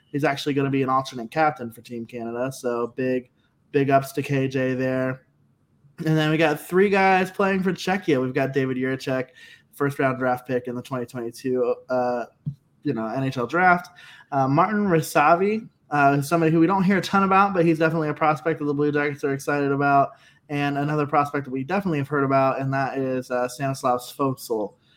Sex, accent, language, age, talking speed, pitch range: male, American, English, 20-39, 195 wpm, 130-165 Hz